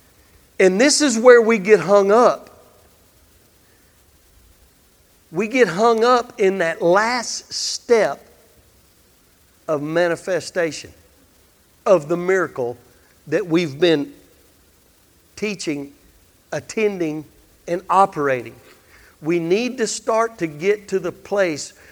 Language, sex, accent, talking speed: English, male, American, 100 wpm